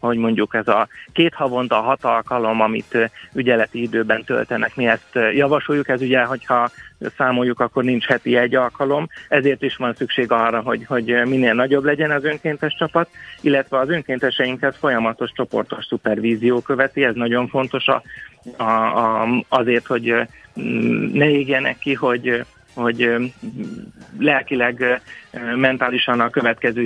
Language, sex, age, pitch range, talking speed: Hungarian, male, 30-49, 115-130 Hz, 130 wpm